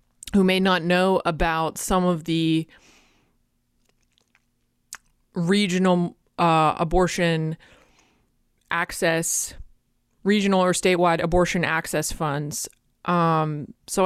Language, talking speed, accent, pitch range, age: English, 85 wpm, American, 165-185 Hz, 20-39